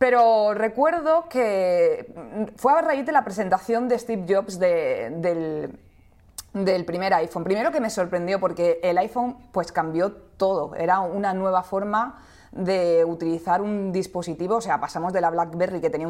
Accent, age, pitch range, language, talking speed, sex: Spanish, 20-39, 180-235 Hz, Spanish, 160 wpm, female